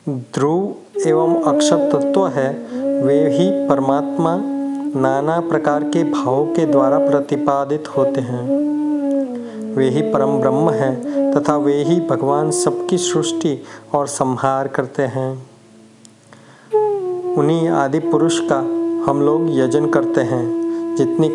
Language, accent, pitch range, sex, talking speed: Hindi, native, 140-180 Hz, male, 120 wpm